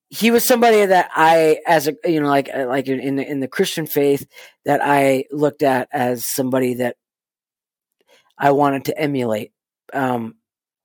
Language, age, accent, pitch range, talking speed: English, 40-59, American, 135-155 Hz, 160 wpm